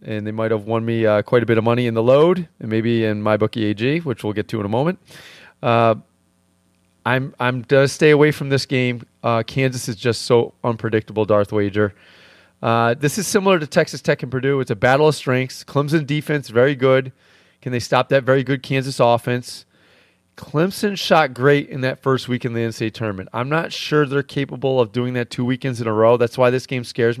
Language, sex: English, male